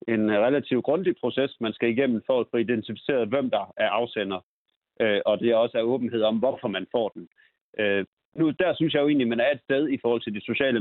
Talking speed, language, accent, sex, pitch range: 220 wpm, Danish, native, male, 105-125 Hz